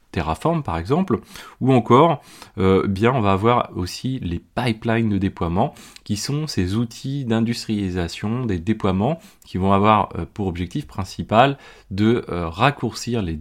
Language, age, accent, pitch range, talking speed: French, 30-49, French, 100-125 Hz, 145 wpm